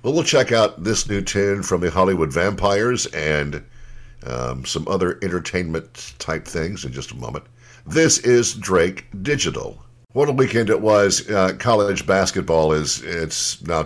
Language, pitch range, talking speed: English, 80-120 Hz, 155 wpm